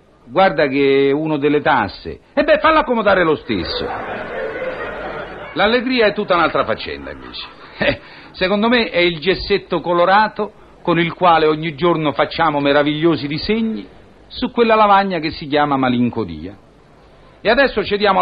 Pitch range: 140-210 Hz